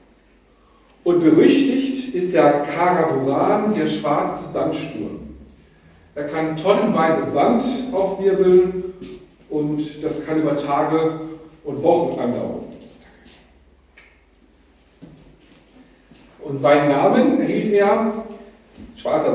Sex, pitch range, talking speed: male, 150-215 Hz, 85 wpm